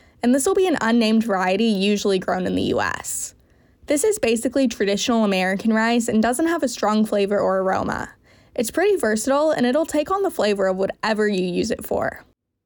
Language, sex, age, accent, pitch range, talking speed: English, female, 10-29, American, 195-260 Hz, 195 wpm